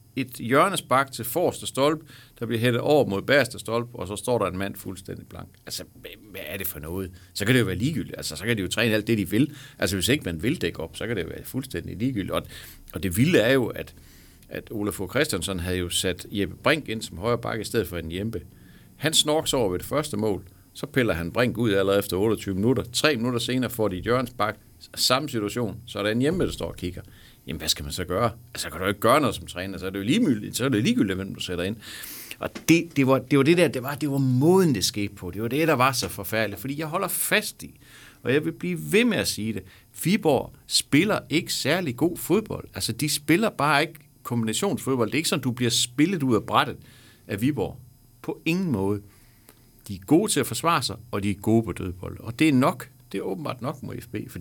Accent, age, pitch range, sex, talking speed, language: native, 60-79, 100-135 Hz, male, 255 wpm, Danish